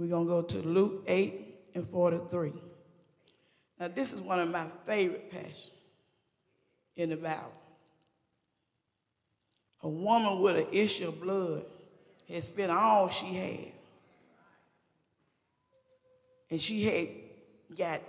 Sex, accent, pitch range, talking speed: female, American, 165-250 Hz, 125 wpm